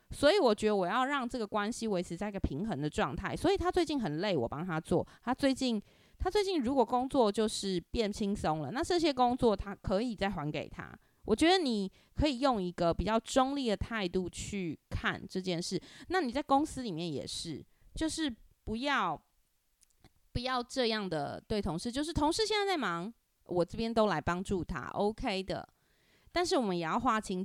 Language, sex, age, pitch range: Chinese, female, 20-39, 180-255 Hz